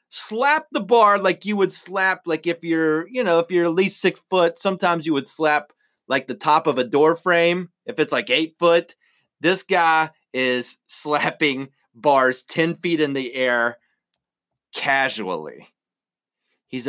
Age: 30-49